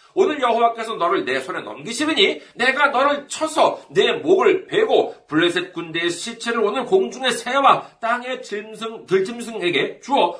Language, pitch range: Korean, 195-270 Hz